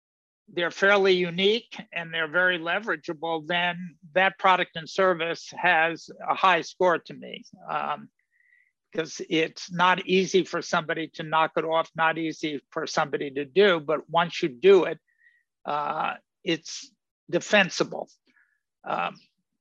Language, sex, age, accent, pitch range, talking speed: English, male, 60-79, American, 165-200 Hz, 135 wpm